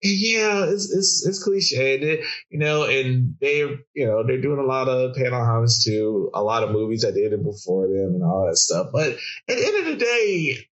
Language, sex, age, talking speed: English, male, 20-39, 225 wpm